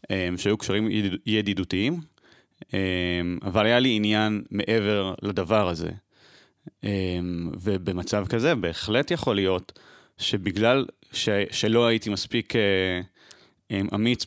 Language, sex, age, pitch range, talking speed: Hebrew, male, 30-49, 95-115 Hz, 90 wpm